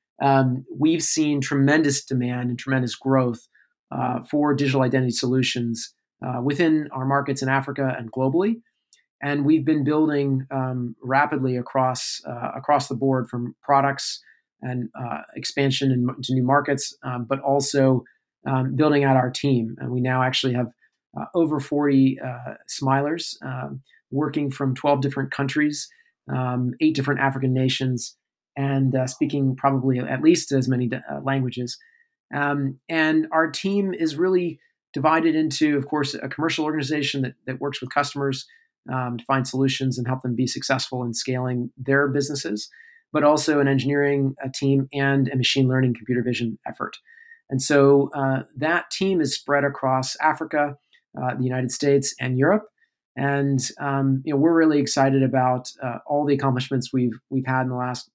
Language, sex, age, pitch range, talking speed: English, male, 40-59, 130-145 Hz, 160 wpm